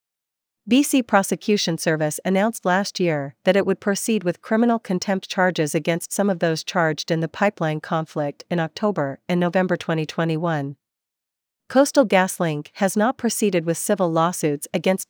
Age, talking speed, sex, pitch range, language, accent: 40-59, 145 wpm, female, 165-200 Hz, English, American